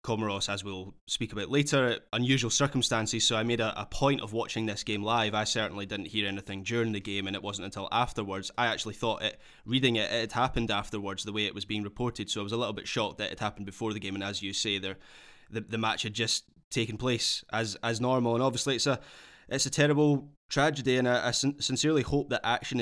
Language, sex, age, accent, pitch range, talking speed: English, male, 10-29, British, 105-125 Hz, 235 wpm